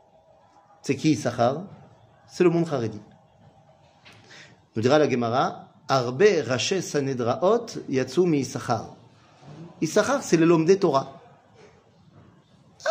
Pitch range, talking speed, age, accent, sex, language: 140-195 Hz, 100 wpm, 30-49, French, male, French